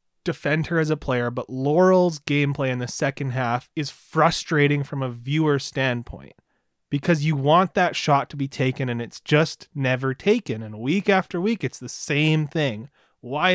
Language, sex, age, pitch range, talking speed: English, male, 30-49, 130-160 Hz, 175 wpm